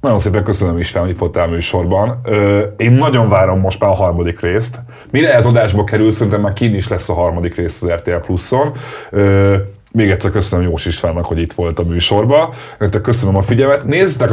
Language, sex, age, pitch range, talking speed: Hungarian, male, 30-49, 90-115 Hz, 195 wpm